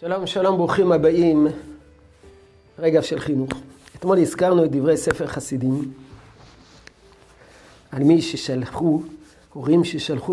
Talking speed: 105 wpm